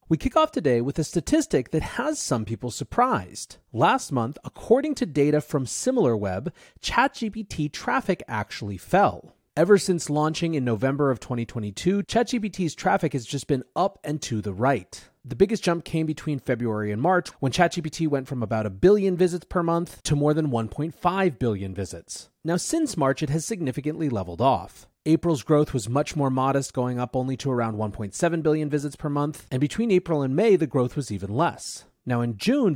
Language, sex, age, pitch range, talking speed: English, male, 30-49, 125-175 Hz, 185 wpm